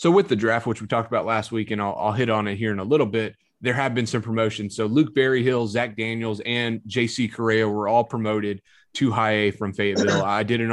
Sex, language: male, English